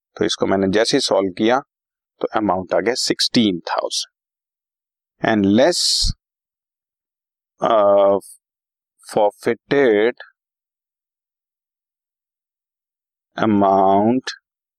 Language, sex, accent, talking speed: Hindi, male, native, 70 wpm